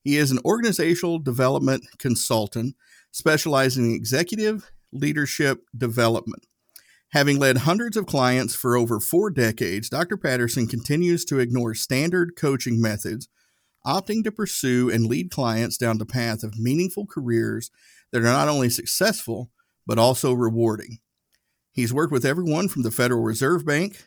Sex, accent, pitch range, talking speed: male, American, 115-145 Hz, 140 wpm